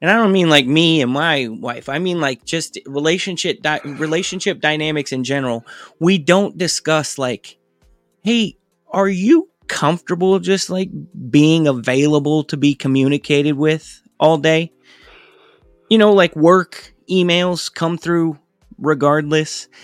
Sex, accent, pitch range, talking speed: male, American, 130-170 Hz, 135 wpm